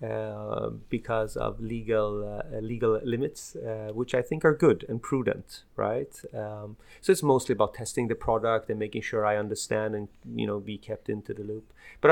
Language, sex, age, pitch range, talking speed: Swedish, male, 30-49, 105-125 Hz, 190 wpm